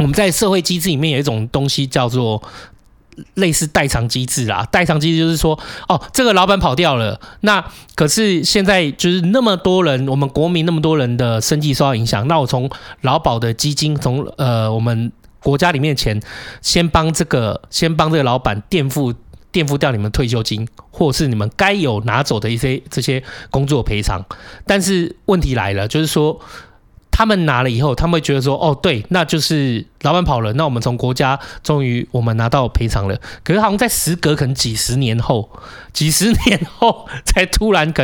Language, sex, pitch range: Chinese, male, 120-170 Hz